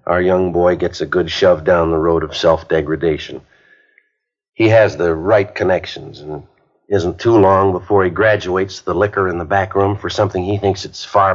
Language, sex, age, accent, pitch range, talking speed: English, male, 60-79, American, 90-105 Hz, 195 wpm